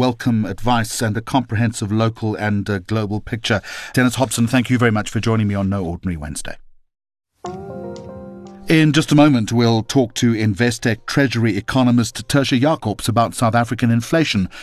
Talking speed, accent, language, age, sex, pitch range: 155 wpm, British, English, 50-69, male, 105-130 Hz